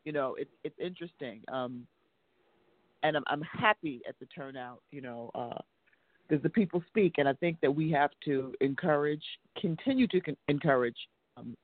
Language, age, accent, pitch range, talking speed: English, 40-59, American, 125-150 Hz, 170 wpm